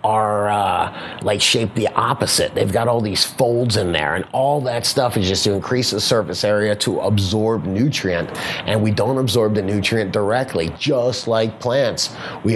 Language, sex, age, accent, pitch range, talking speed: English, male, 30-49, American, 105-140 Hz, 180 wpm